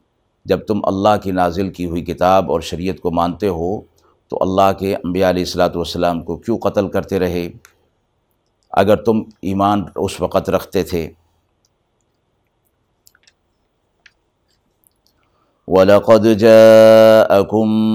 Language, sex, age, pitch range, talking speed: Urdu, male, 50-69, 90-105 Hz, 110 wpm